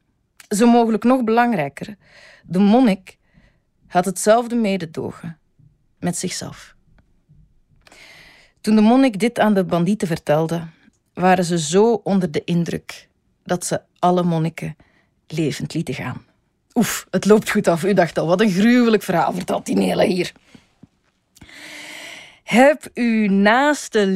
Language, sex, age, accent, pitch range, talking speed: Dutch, female, 40-59, Dutch, 160-210 Hz, 125 wpm